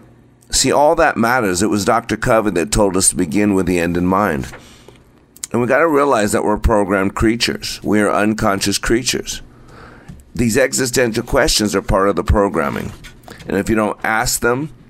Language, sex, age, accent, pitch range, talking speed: English, male, 50-69, American, 95-115 Hz, 180 wpm